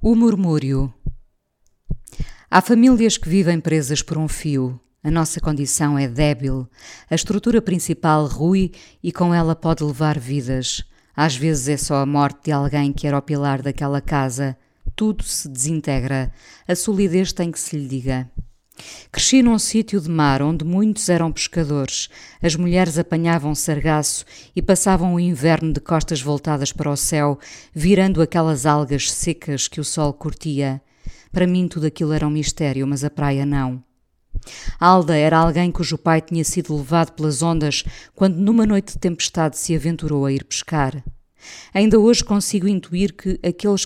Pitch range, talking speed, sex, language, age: 140-170 Hz, 160 wpm, female, Portuguese, 20-39